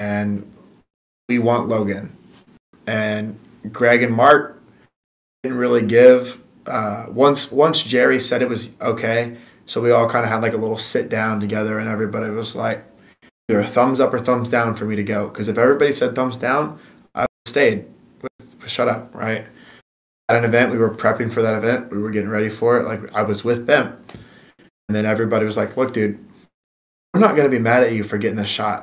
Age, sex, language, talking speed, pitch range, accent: 20-39, male, English, 205 wpm, 105-120 Hz, American